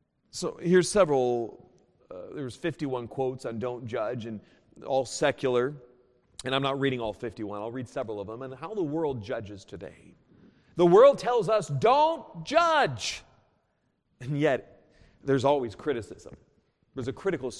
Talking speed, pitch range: 150 wpm, 145-235 Hz